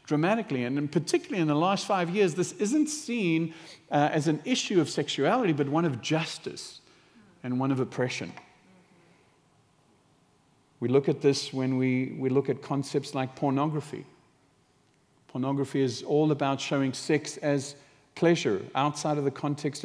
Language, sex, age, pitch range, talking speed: English, male, 50-69, 140-170 Hz, 150 wpm